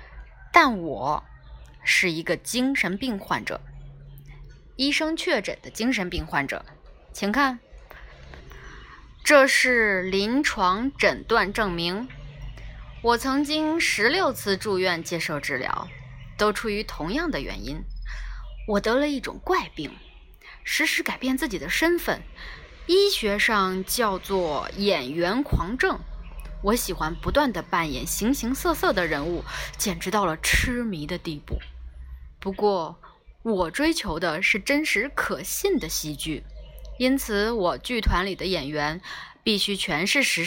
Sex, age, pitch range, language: female, 20-39, 170-265 Hz, Chinese